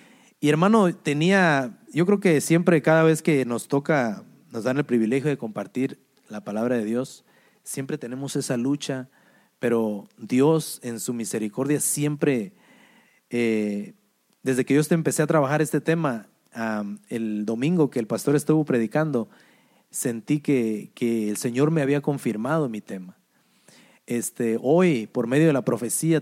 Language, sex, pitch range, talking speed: English, male, 120-155 Hz, 145 wpm